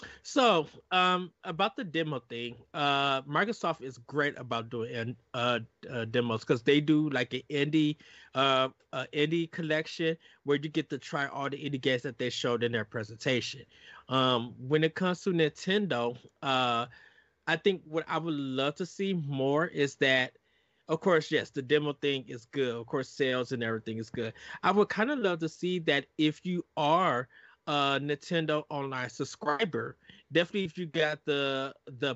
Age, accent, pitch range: 20-39, American, 130-160 Hz